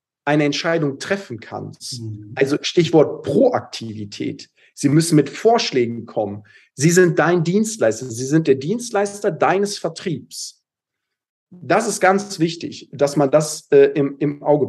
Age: 40-59